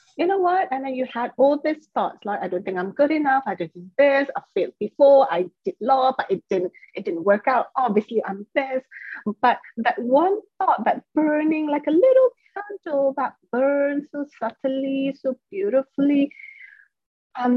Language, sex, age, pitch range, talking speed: English, female, 30-49, 240-315 Hz, 185 wpm